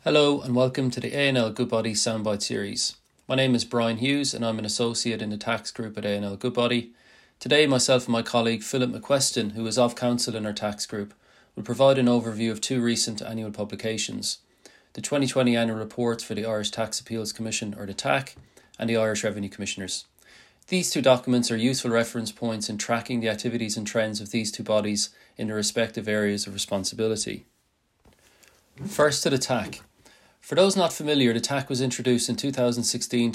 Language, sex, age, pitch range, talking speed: English, male, 30-49, 110-125 Hz, 185 wpm